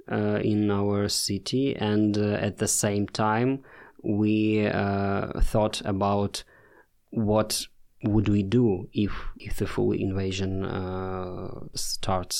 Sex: male